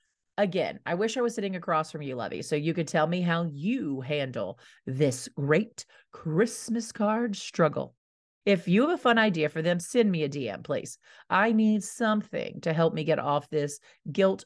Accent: American